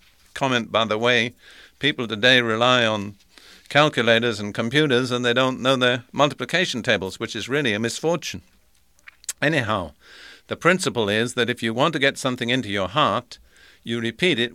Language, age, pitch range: English, 50-69, 110-135 Hz